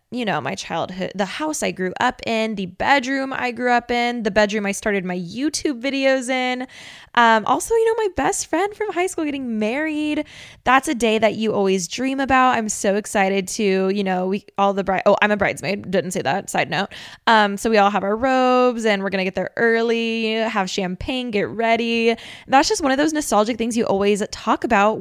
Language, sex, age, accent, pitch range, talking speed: English, female, 10-29, American, 195-245 Hz, 220 wpm